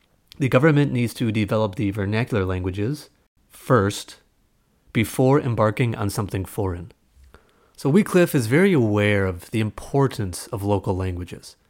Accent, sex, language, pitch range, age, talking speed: American, male, English, 100-130 Hz, 30-49, 130 wpm